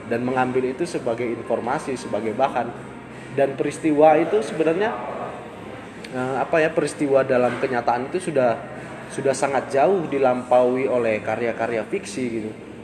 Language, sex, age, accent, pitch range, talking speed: Indonesian, male, 20-39, native, 115-145 Hz, 120 wpm